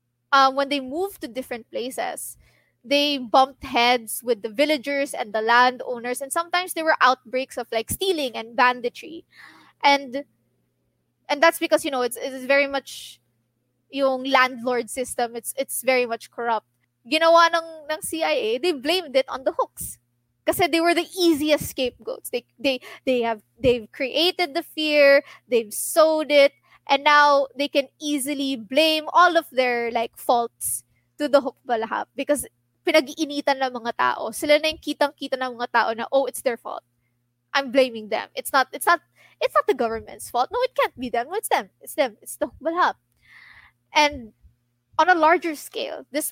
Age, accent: 20-39, native